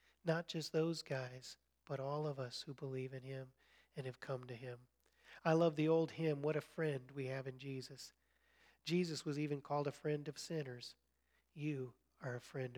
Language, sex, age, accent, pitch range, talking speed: English, male, 40-59, American, 135-160 Hz, 195 wpm